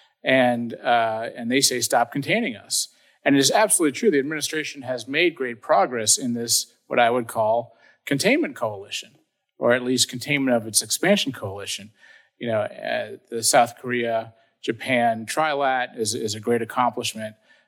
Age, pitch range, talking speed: 40-59, 115-140 Hz, 165 wpm